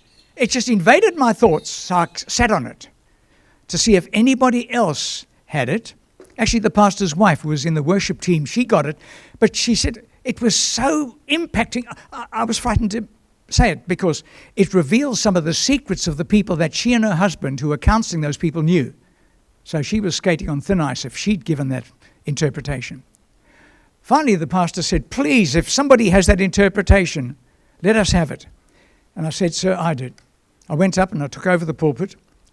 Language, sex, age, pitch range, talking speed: English, male, 60-79, 160-225 Hz, 190 wpm